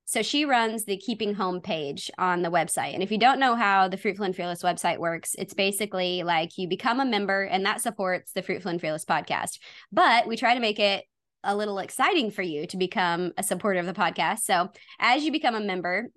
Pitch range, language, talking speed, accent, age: 180-215 Hz, English, 225 wpm, American, 20-39